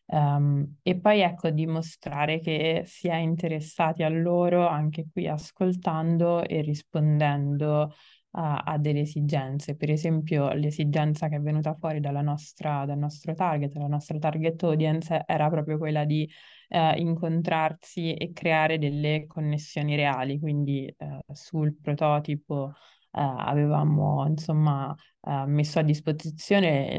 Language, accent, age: Italian, native, 20-39